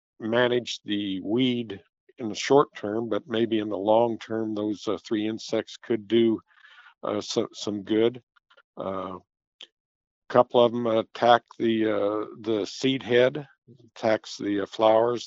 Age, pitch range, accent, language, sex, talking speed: 50-69, 105-120 Hz, American, English, male, 145 wpm